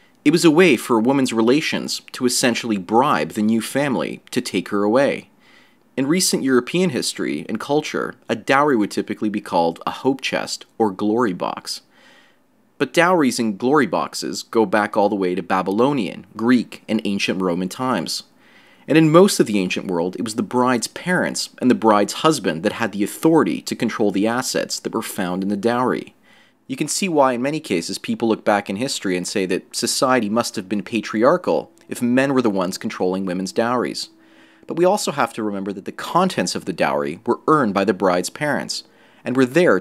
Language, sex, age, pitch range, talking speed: English, male, 30-49, 100-130 Hz, 200 wpm